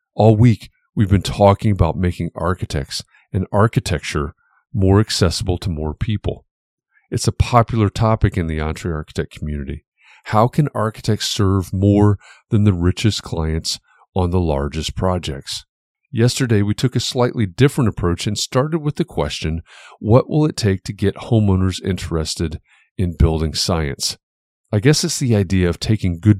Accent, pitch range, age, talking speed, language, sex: American, 85-110 Hz, 40-59, 155 wpm, English, male